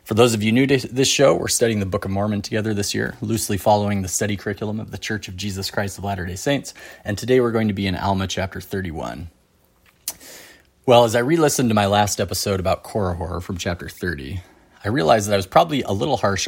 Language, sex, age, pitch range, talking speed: English, male, 30-49, 90-115 Hz, 235 wpm